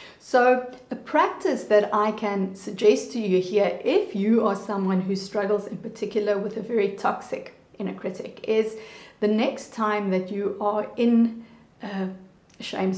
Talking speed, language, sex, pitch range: 155 wpm, English, female, 205-260 Hz